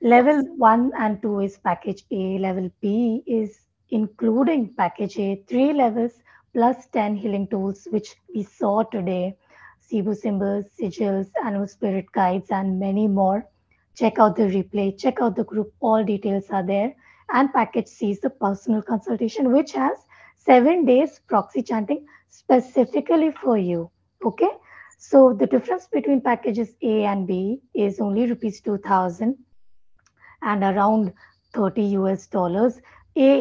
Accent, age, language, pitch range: Indian, 20-39, English, 195-240 Hz